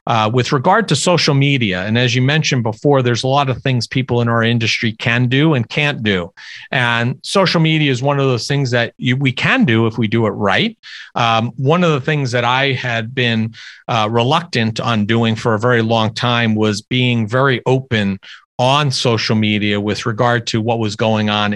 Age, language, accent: 50-69, English, American